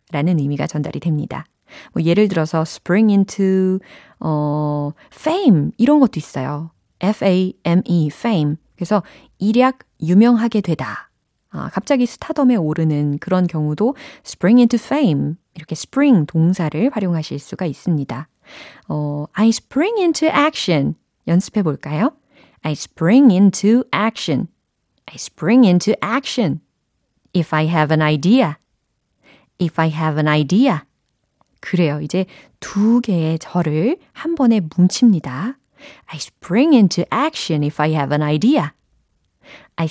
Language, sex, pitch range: Korean, female, 155-235 Hz